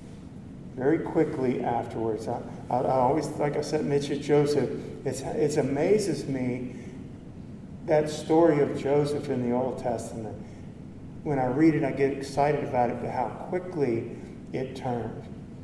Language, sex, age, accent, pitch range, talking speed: English, male, 50-69, American, 135-155 Hz, 140 wpm